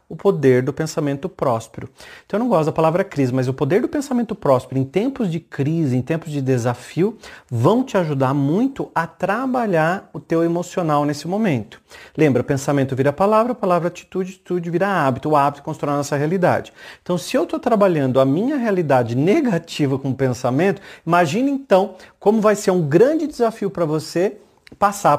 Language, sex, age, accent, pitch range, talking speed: Portuguese, male, 40-59, Brazilian, 140-200 Hz, 180 wpm